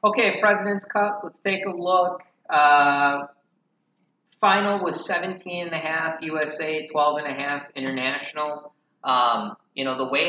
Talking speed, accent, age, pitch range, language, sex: 145 wpm, American, 30-49, 130-160 Hz, English, male